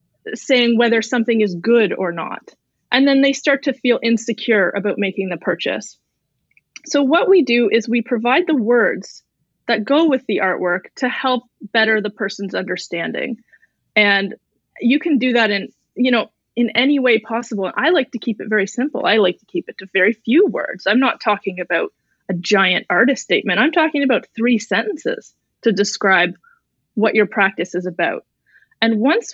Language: English